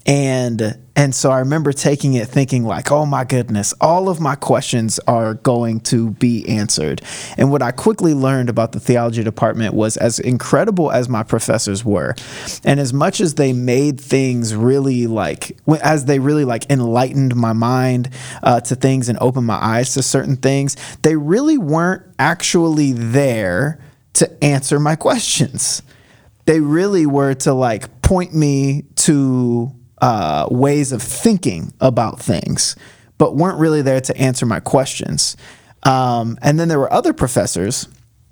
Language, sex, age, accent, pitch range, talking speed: English, male, 20-39, American, 120-145 Hz, 160 wpm